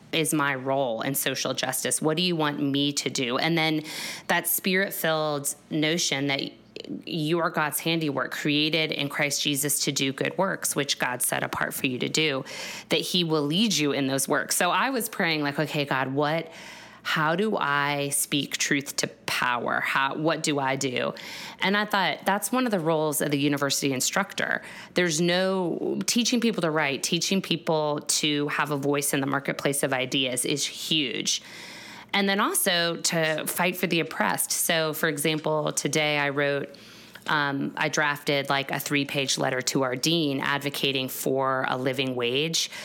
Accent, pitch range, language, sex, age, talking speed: American, 145-175 Hz, English, female, 20-39, 175 wpm